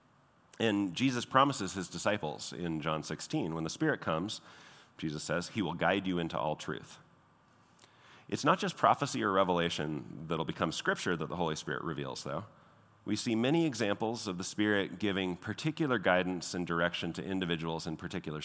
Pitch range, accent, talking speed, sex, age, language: 80-110 Hz, American, 170 wpm, male, 40-59, English